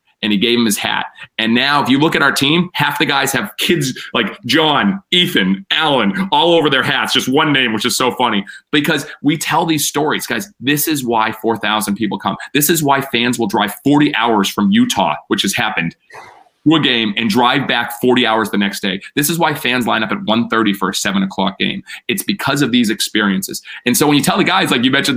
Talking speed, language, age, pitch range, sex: 235 wpm, English, 30-49, 125-175 Hz, male